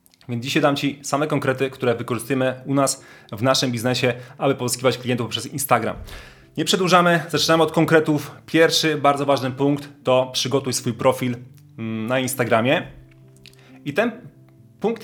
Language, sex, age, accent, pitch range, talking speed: Polish, male, 30-49, native, 125-150 Hz, 145 wpm